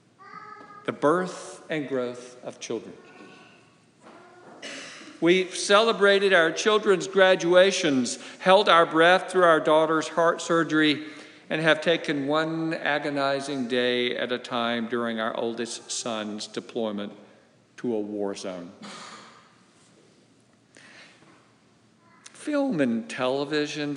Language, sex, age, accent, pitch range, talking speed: English, male, 50-69, American, 125-180 Hz, 100 wpm